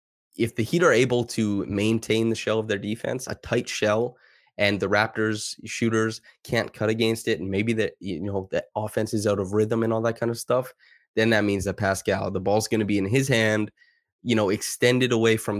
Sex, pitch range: male, 95-115 Hz